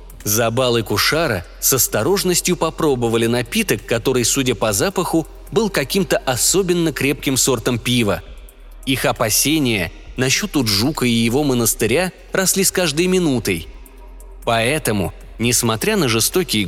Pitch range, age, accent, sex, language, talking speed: 115-160 Hz, 20-39, native, male, Russian, 110 wpm